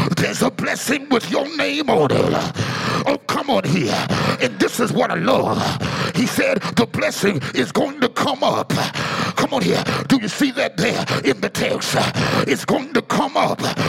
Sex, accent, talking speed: male, American, 185 wpm